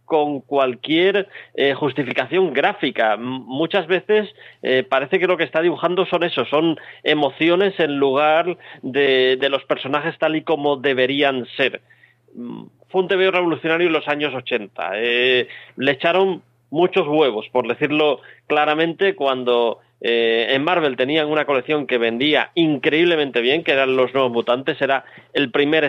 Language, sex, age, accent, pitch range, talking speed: Spanish, male, 30-49, Spanish, 130-165 Hz, 150 wpm